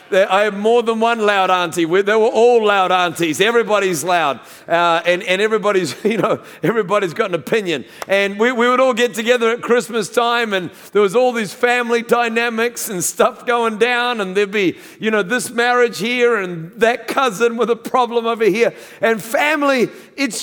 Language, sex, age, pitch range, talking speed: English, male, 50-69, 190-245 Hz, 190 wpm